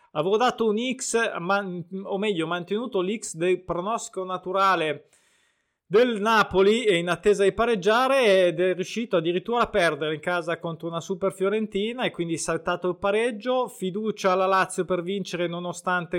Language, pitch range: Italian, 165-205 Hz